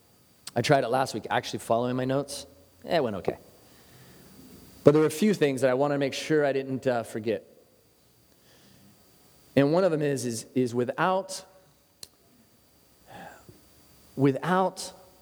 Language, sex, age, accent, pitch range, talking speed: English, male, 30-49, American, 115-160 Hz, 150 wpm